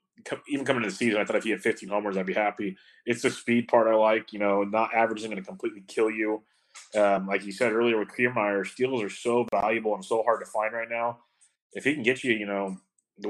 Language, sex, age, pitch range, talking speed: English, male, 30-49, 100-115 Hz, 255 wpm